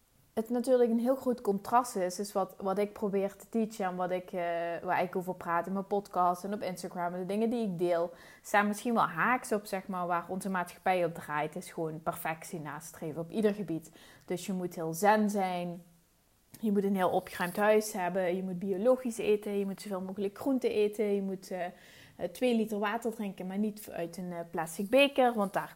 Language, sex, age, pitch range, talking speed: Dutch, female, 20-39, 180-230 Hz, 210 wpm